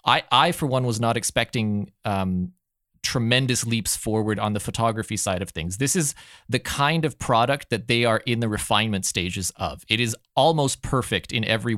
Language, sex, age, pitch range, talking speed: English, male, 20-39, 105-125 Hz, 190 wpm